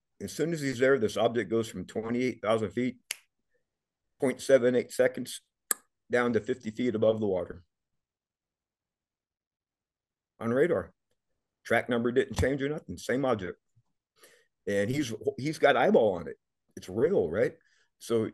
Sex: male